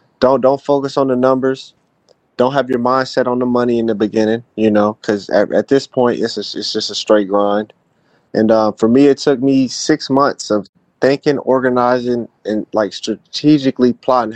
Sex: male